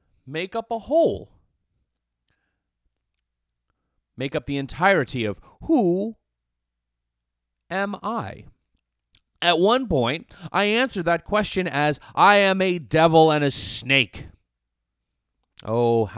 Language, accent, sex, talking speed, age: English, American, male, 105 wpm, 40-59